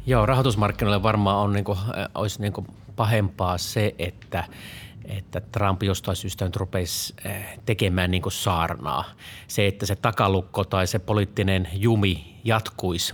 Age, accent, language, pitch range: 30-49, native, Finnish, 95-110 Hz